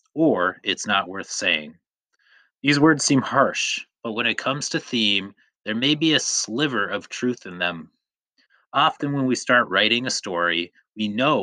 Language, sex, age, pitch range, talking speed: English, male, 30-49, 95-120 Hz, 175 wpm